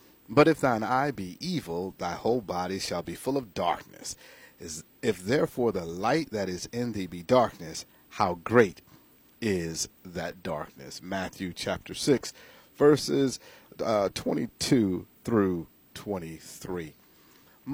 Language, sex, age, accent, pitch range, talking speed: English, male, 50-69, American, 100-140 Hz, 125 wpm